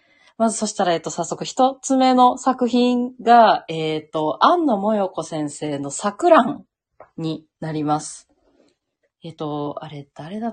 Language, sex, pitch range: Japanese, female, 145-235 Hz